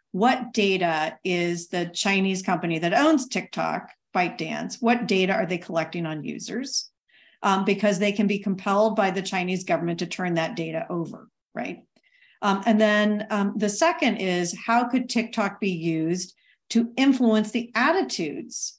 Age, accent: 40-59, American